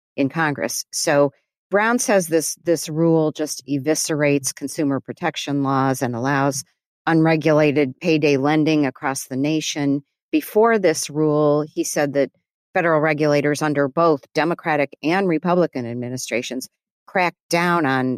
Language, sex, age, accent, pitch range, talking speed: English, female, 50-69, American, 130-160 Hz, 125 wpm